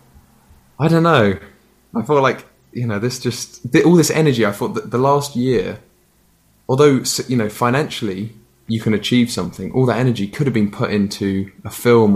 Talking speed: 185 wpm